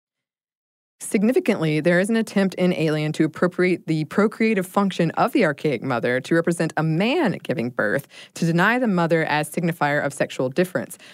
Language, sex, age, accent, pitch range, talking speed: English, female, 20-39, American, 145-180 Hz, 165 wpm